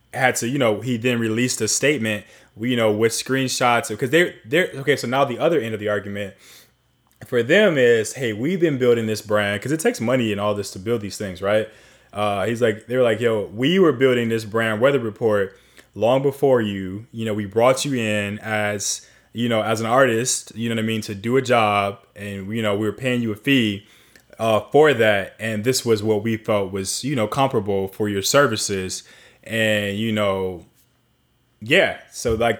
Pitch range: 105-125 Hz